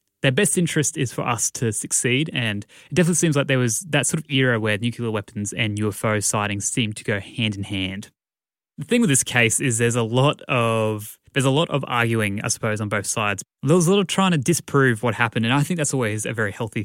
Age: 20-39